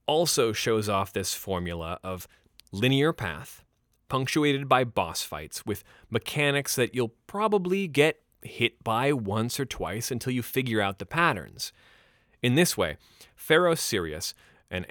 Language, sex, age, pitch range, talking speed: English, male, 30-49, 100-135 Hz, 140 wpm